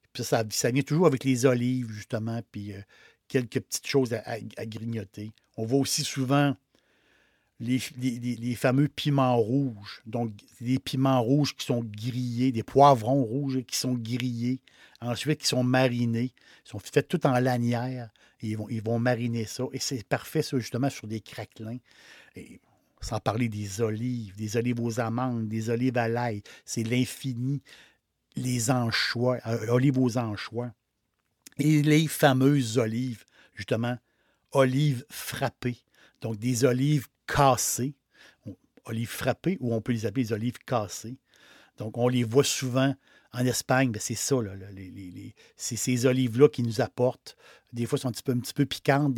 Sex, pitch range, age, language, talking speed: male, 115-135 Hz, 60-79, French, 170 wpm